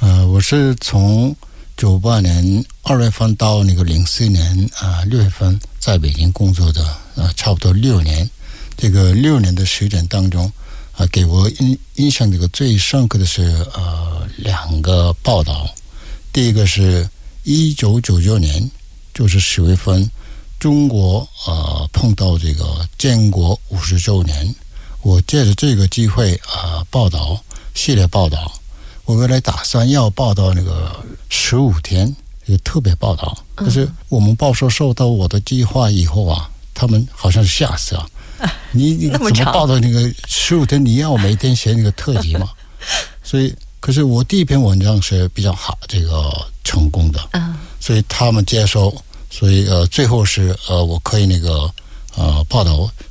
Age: 60-79